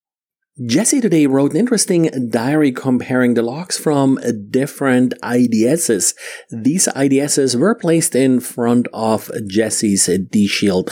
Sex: male